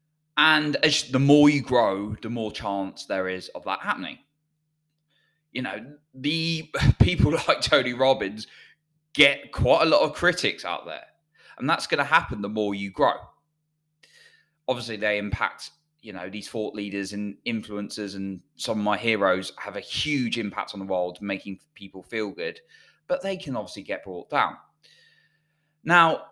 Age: 20-39